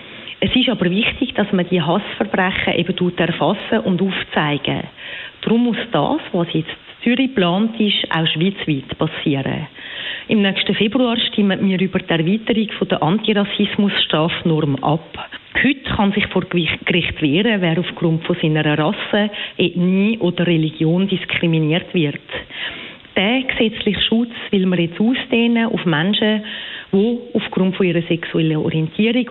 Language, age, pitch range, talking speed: German, 40-59, 170-215 Hz, 135 wpm